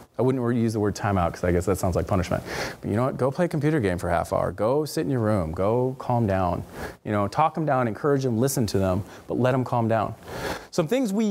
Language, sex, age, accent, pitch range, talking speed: English, male, 30-49, American, 100-150 Hz, 270 wpm